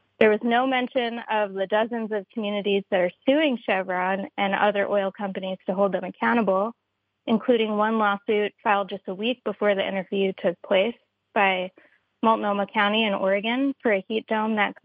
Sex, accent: female, American